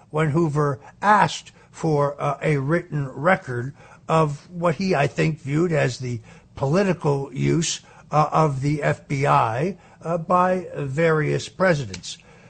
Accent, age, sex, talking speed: American, 60-79, male, 125 wpm